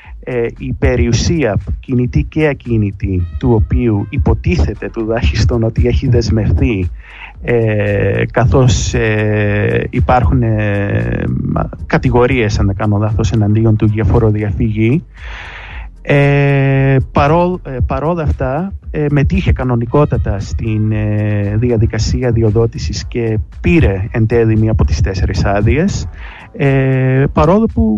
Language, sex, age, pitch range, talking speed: English, male, 30-49, 105-140 Hz, 105 wpm